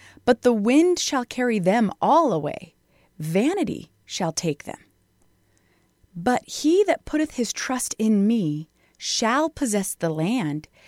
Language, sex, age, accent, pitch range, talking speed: English, female, 30-49, American, 200-275 Hz, 130 wpm